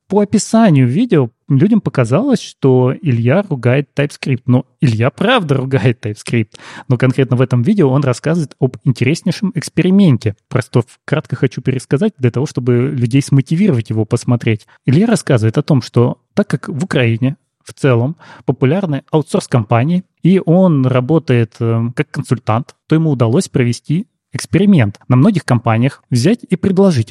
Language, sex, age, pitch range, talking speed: Russian, male, 30-49, 125-165 Hz, 140 wpm